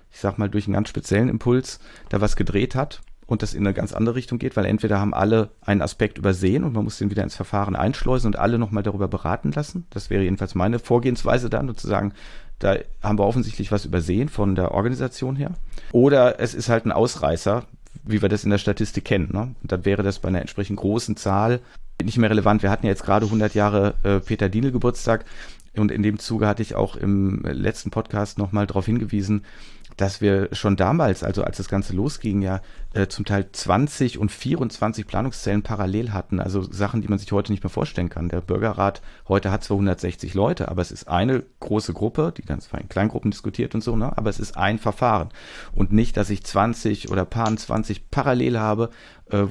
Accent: German